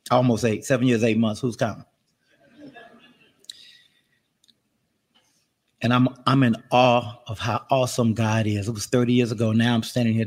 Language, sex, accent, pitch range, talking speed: English, male, American, 115-135 Hz, 160 wpm